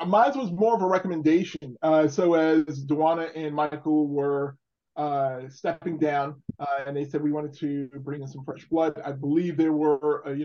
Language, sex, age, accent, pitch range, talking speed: English, male, 20-39, American, 145-165 Hz, 195 wpm